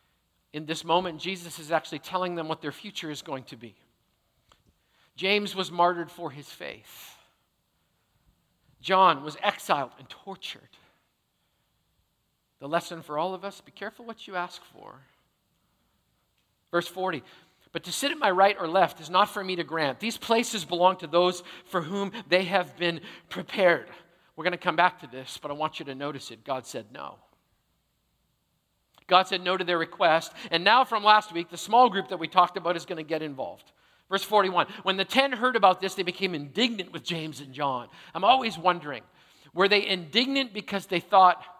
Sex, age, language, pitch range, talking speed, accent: male, 50-69, English, 160-195 Hz, 185 wpm, American